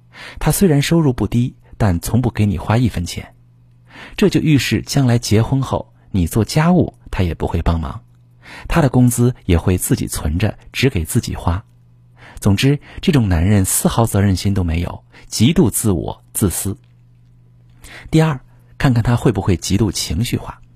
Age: 50-69